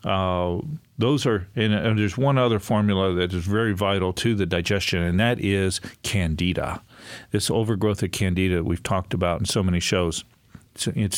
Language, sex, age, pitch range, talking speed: English, male, 40-59, 95-115 Hz, 185 wpm